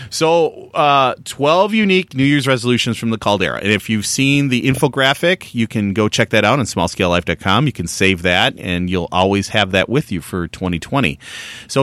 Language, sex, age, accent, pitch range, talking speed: English, male, 30-49, American, 100-150 Hz, 195 wpm